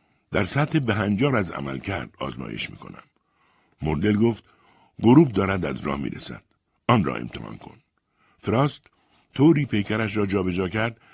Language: Persian